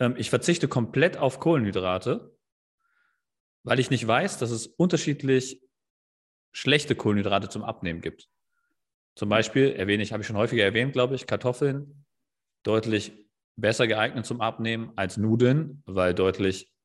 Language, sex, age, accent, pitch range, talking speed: German, male, 30-49, German, 105-130 Hz, 130 wpm